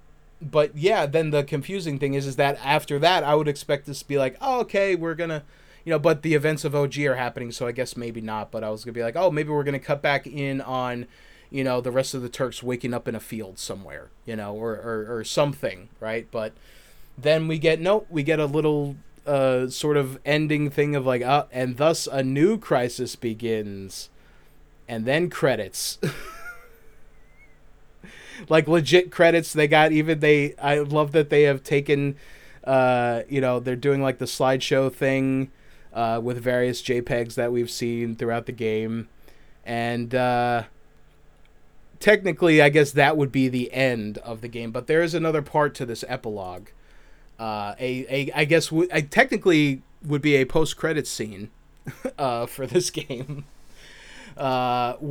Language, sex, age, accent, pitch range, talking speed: English, male, 20-39, American, 120-150 Hz, 185 wpm